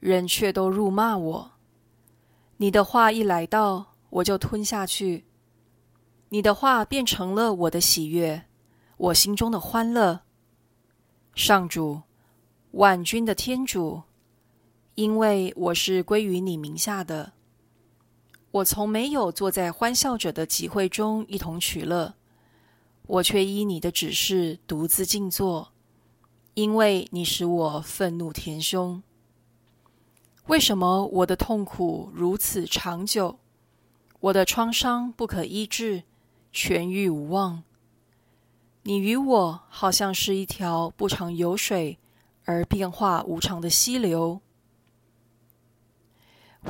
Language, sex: Chinese, female